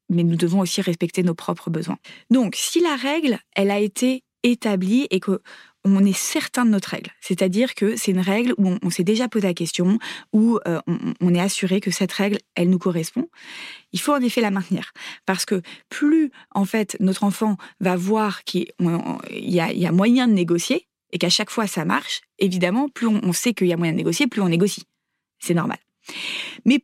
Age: 20-39